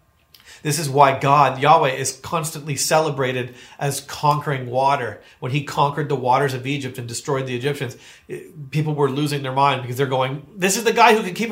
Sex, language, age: male, Swedish, 40-59